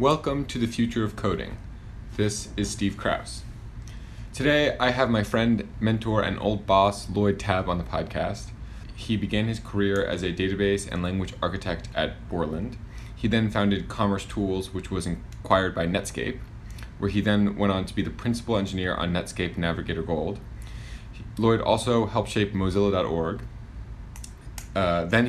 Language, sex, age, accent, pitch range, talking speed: English, male, 20-39, American, 90-110 Hz, 155 wpm